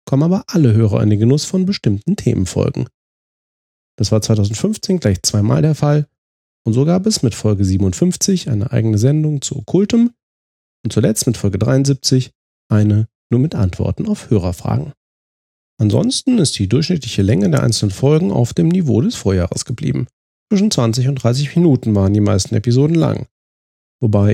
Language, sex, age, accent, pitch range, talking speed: German, male, 30-49, German, 105-145 Hz, 160 wpm